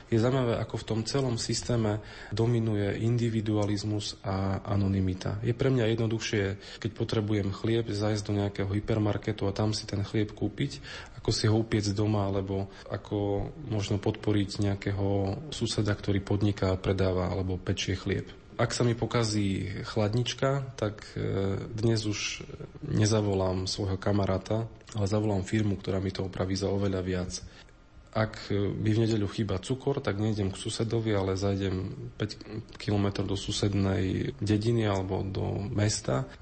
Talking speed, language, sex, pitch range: 145 wpm, Slovak, male, 100-115 Hz